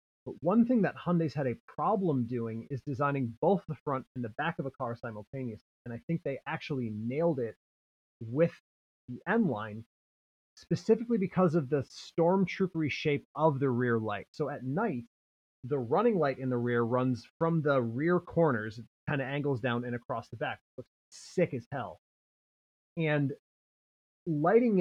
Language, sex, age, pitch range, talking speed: English, male, 30-49, 115-165 Hz, 170 wpm